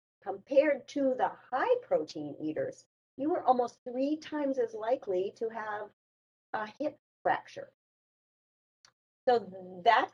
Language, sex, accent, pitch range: English, female, American, 175-240 Hz